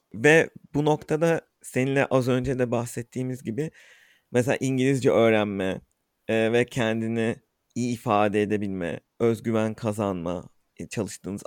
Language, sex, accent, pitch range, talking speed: Turkish, male, native, 115-140 Hz, 105 wpm